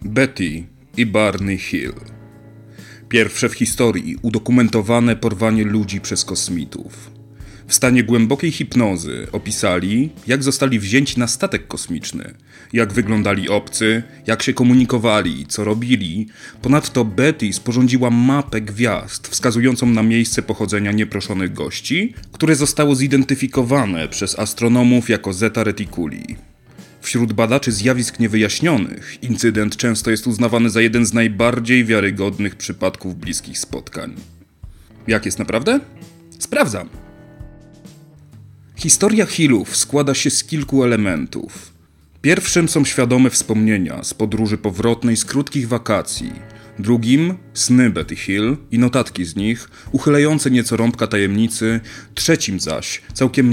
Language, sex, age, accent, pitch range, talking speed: Polish, male, 30-49, native, 105-130 Hz, 115 wpm